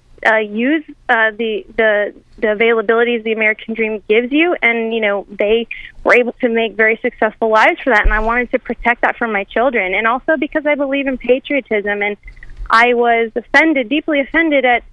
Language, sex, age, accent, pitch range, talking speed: English, female, 20-39, American, 220-270 Hz, 195 wpm